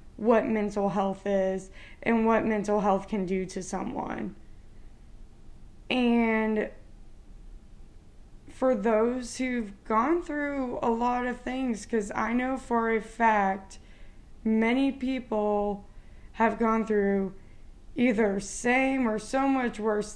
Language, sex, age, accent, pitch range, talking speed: English, female, 20-39, American, 205-245 Hz, 115 wpm